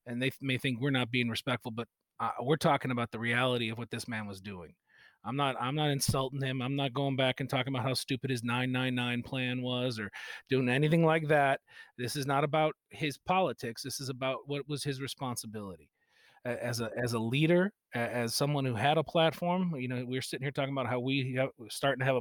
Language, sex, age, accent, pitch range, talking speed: English, male, 40-59, American, 120-145 Hz, 220 wpm